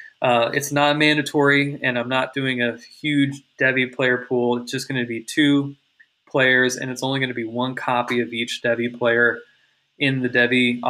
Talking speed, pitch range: 195 wpm, 120-140 Hz